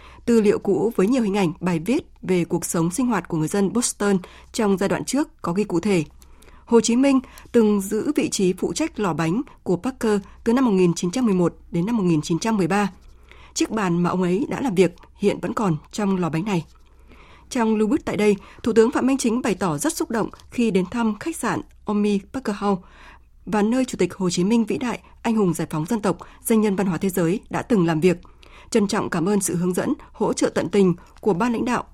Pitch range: 180-230 Hz